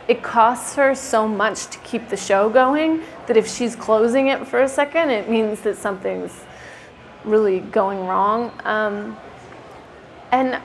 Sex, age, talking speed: female, 20-39, 150 wpm